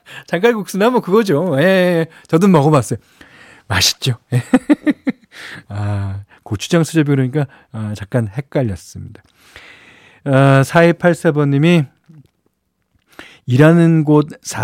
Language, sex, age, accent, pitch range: Korean, male, 40-59, native, 120-165 Hz